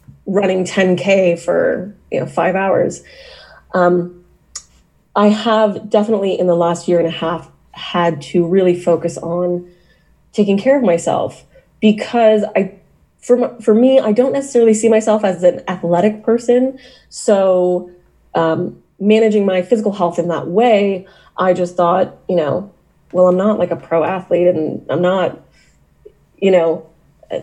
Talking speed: 150 wpm